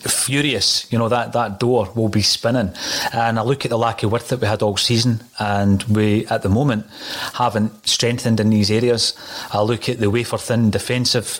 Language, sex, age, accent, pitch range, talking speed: English, male, 30-49, British, 105-120 Hz, 200 wpm